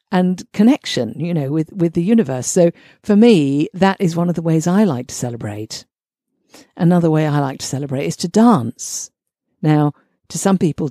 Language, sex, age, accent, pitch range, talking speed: English, female, 50-69, British, 145-185 Hz, 185 wpm